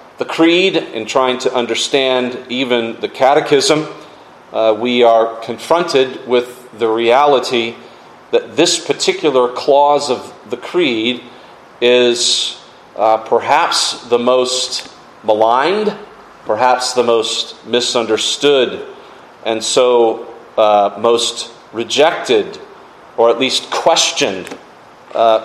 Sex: male